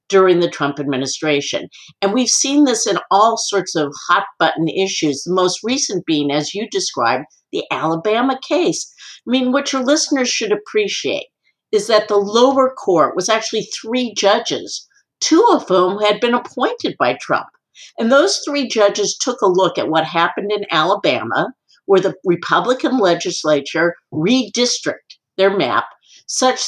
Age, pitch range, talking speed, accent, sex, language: 50-69, 165-245 Hz, 155 wpm, American, female, English